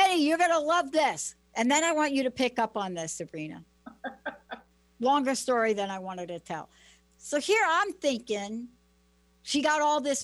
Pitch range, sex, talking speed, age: 160-250 Hz, female, 175 wpm, 60-79